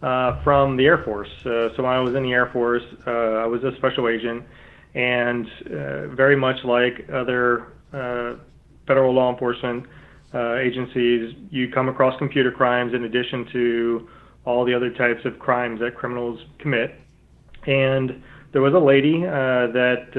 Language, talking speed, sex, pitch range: English, 165 wpm, male, 115-130 Hz